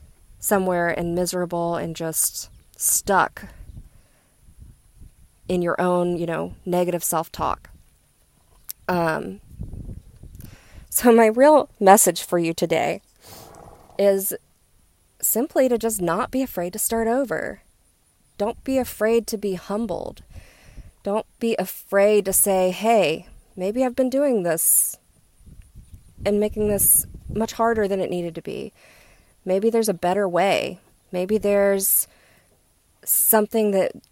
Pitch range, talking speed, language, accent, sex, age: 175-215 Hz, 120 wpm, English, American, female, 20-39